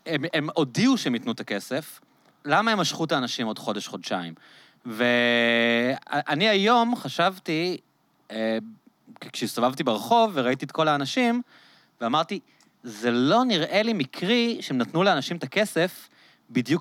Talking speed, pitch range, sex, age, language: 130 wpm, 125-185 Hz, male, 30-49, Hebrew